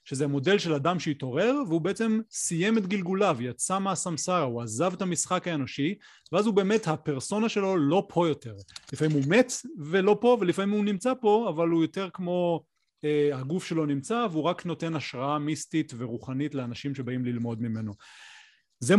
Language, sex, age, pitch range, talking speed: Hebrew, male, 30-49, 140-185 Hz, 170 wpm